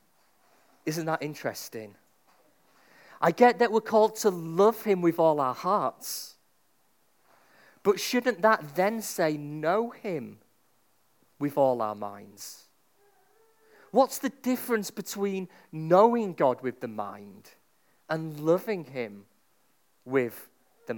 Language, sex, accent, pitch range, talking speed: English, male, British, 145-220 Hz, 115 wpm